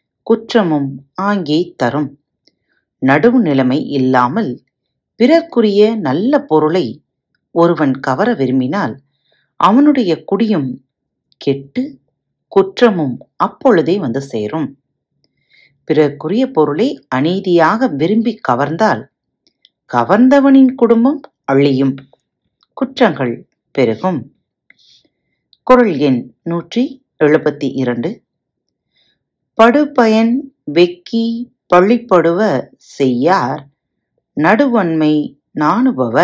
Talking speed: 60 wpm